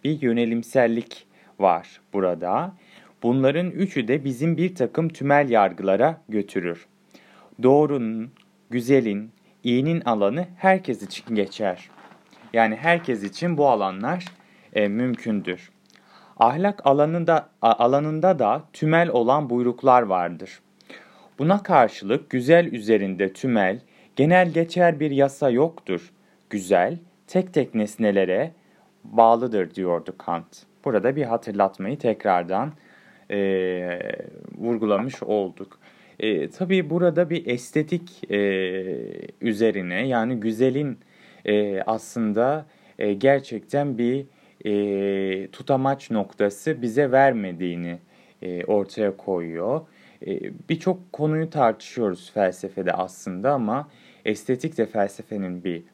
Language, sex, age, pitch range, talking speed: Turkish, male, 30-49, 100-155 Hz, 100 wpm